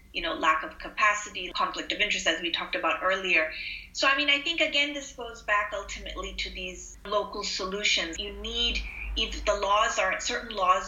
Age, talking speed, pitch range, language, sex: 30-49, 195 wpm, 170-230 Hz, English, female